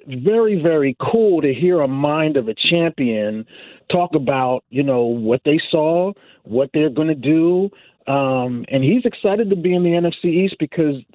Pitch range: 130-170 Hz